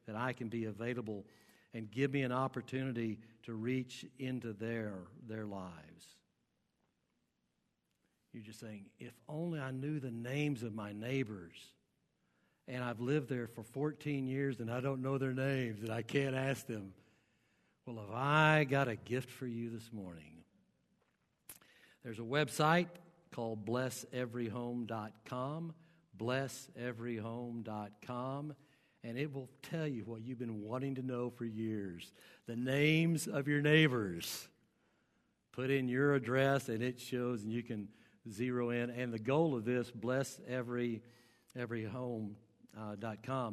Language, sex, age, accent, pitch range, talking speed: English, male, 60-79, American, 110-130 Hz, 135 wpm